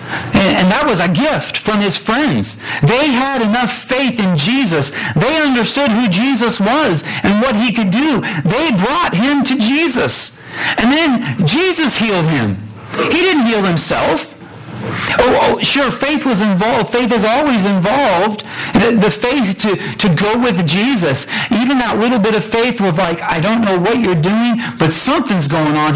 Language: English